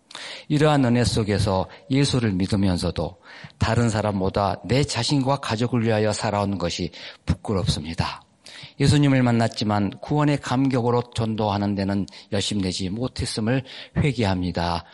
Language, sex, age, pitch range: Korean, male, 40-59, 100-130 Hz